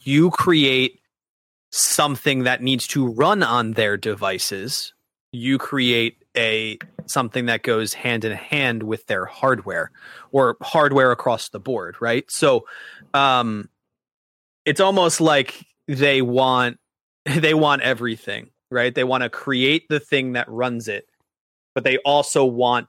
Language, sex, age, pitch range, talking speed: English, male, 30-49, 110-135 Hz, 135 wpm